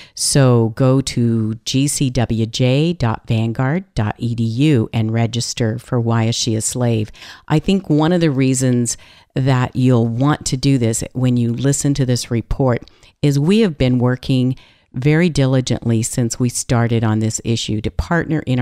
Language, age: English, 50-69